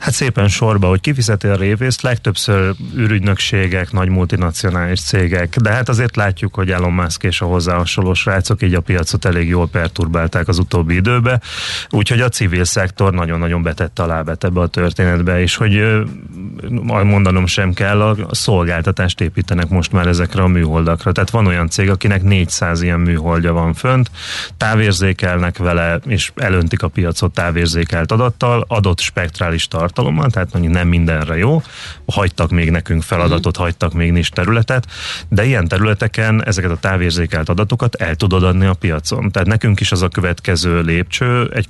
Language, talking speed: Hungarian, 160 wpm